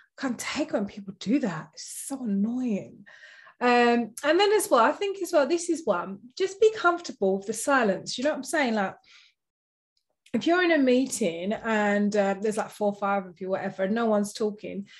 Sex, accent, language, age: female, British, English, 20-39